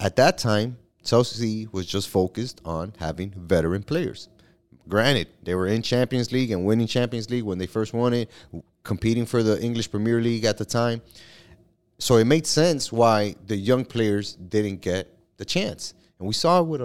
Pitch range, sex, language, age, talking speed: 100-120 Hz, male, English, 30-49, 185 wpm